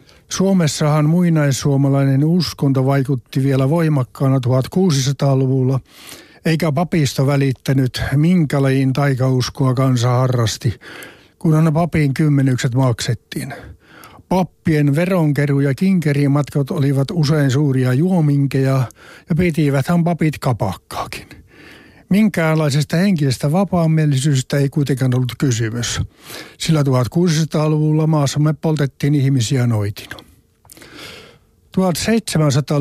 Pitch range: 130-155 Hz